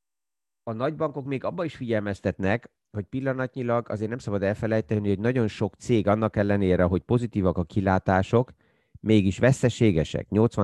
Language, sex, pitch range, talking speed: Hungarian, male, 95-110 Hz, 135 wpm